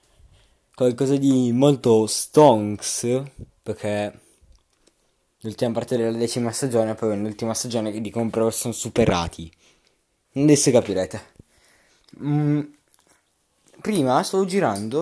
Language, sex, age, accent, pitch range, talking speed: Italian, male, 20-39, native, 105-145 Hz, 90 wpm